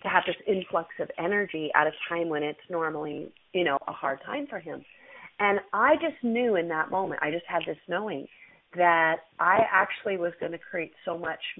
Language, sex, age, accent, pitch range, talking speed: English, female, 40-59, American, 175-250 Hz, 205 wpm